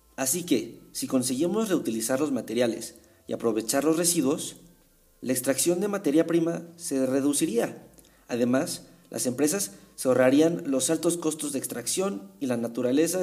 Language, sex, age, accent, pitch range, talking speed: Spanish, male, 40-59, Mexican, 130-185 Hz, 140 wpm